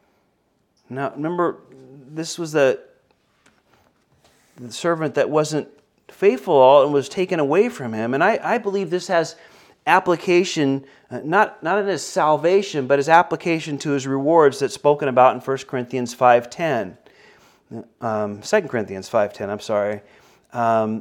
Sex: male